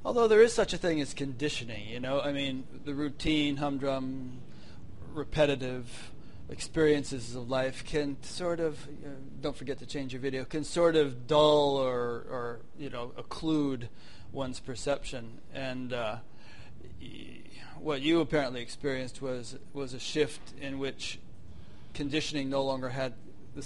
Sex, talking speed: male, 145 wpm